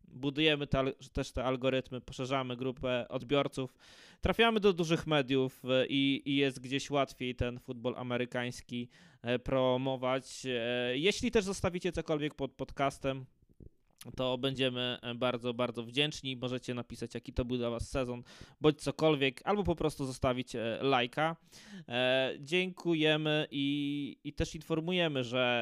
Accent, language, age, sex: native, Polish, 20-39, male